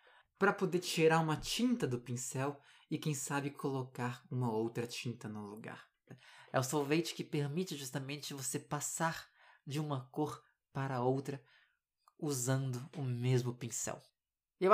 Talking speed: 140 wpm